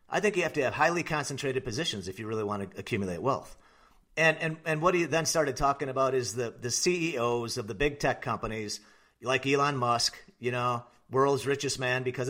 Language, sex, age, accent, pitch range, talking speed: English, male, 40-59, American, 130-155 Hz, 210 wpm